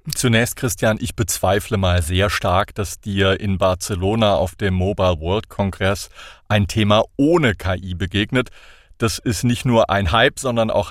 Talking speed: 160 wpm